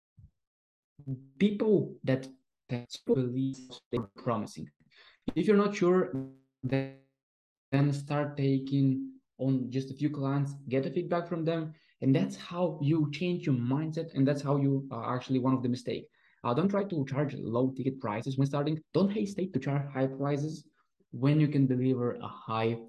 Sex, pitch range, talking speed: male, 125-160 Hz, 160 wpm